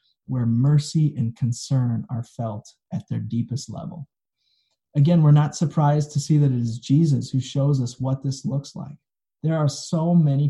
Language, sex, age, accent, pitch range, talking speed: English, male, 30-49, American, 125-145 Hz, 175 wpm